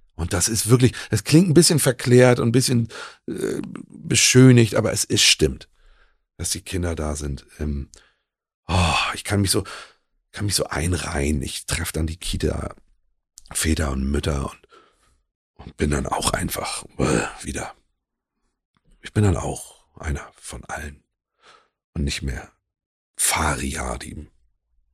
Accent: German